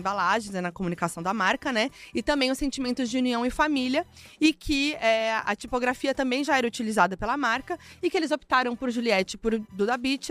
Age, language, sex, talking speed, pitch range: 20-39, Portuguese, female, 200 wpm, 205-255 Hz